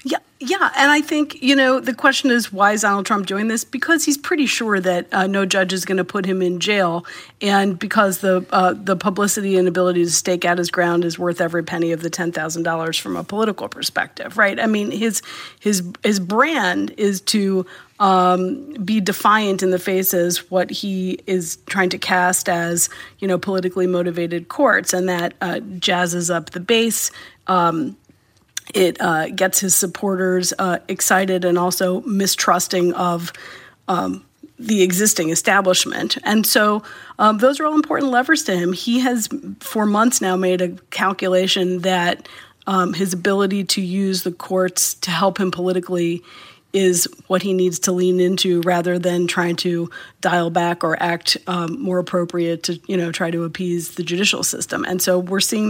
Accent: American